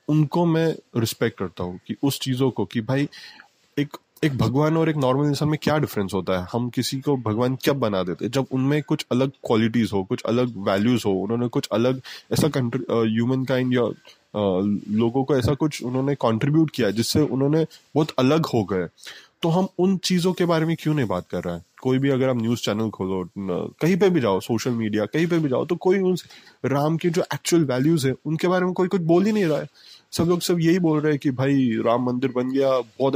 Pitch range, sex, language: 115-155 Hz, male, Hindi